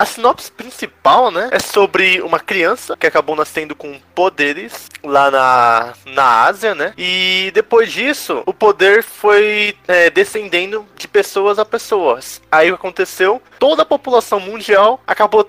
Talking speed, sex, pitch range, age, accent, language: 145 wpm, male, 145-205 Hz, 20-39, Brazilian, Portuguese